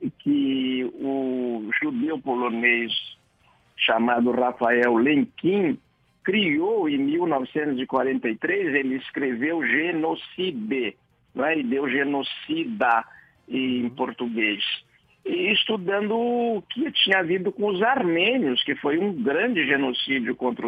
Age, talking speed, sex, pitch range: 60-79, 100 wpm, male, 130-220 Hz